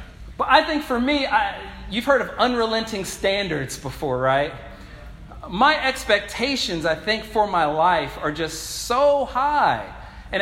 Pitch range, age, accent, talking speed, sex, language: 180-230 Hz, 40-59, American, 140 wpm, male, English